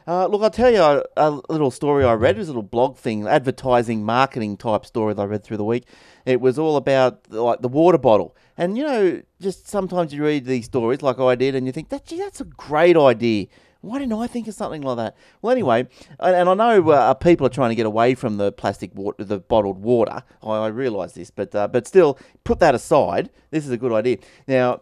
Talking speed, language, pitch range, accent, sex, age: 245 wpm, English, 115-160 Hz, Australian, male, 30-49